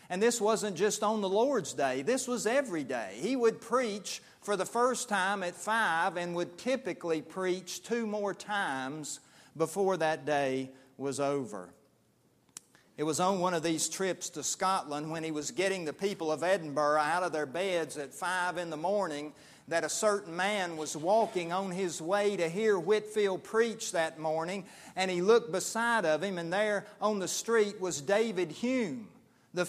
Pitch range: 160-210 Hz